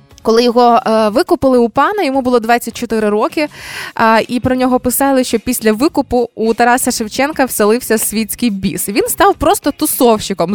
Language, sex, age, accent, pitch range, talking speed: Ukrainian, female, 20-39, native, 225-285 Hz, 150 wpm